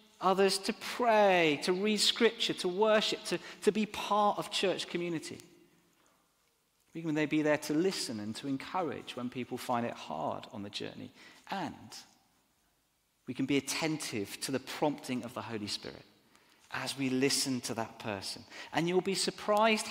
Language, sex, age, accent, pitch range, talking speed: English, male, 40-59, British, 125-180 Hz, 165 wpm